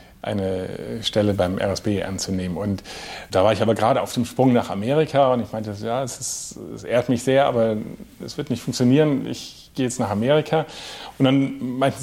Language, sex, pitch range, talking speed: German, male, 100-125 Hz, 195 wpm